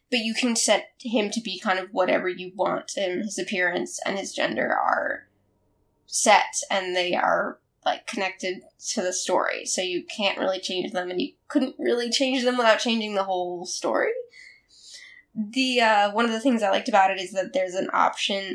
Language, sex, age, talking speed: English, female, 10-29, 195 wpm